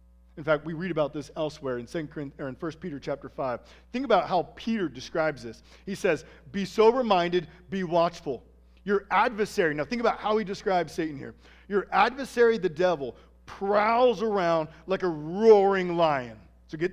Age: 40-59